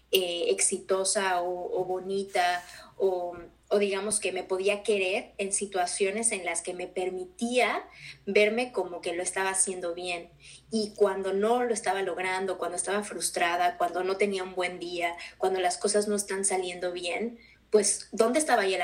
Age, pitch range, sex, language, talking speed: 20-39, 185-225 Hz, female, Spanish, 170 wpm